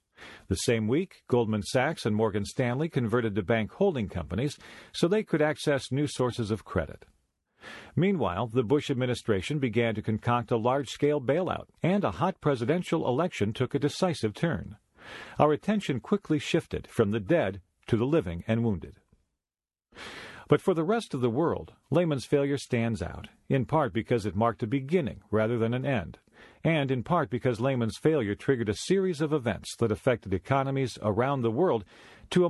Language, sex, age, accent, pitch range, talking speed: English, male, 50-69, American, 105-145 Hz, 170 wpm